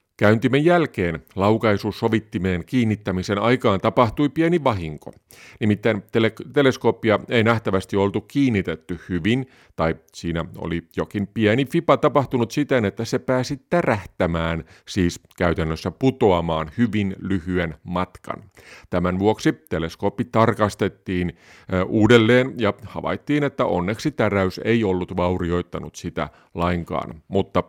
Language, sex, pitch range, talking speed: Finnish, male, 90-120 Hz, 110 wpm